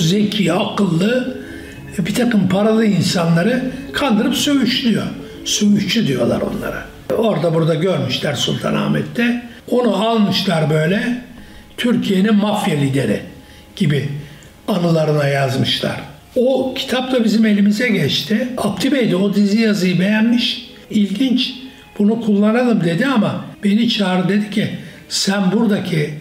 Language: Turkish